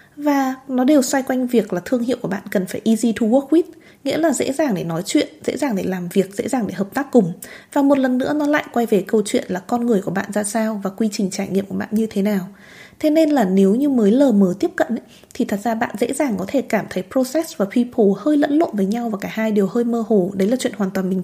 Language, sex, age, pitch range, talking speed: Vietnamese, female, 20-39, 205-285 Hz, 290 wpm